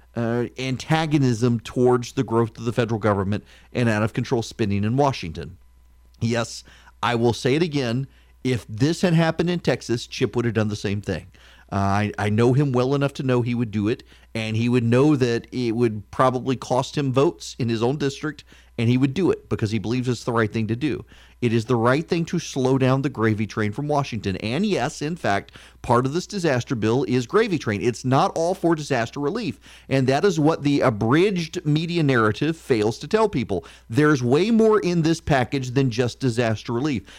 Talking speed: 210 wpm